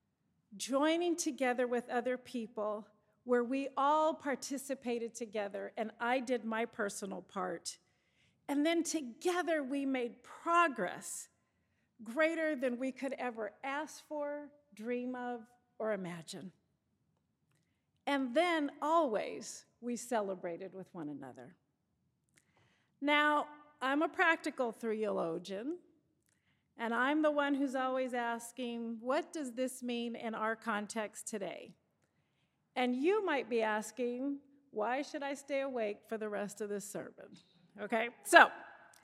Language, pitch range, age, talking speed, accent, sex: English, 225-295 Hz, 50-69, 120 wpm, American, female